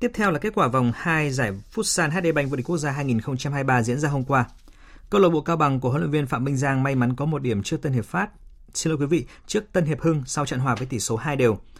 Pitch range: 125-155 Hz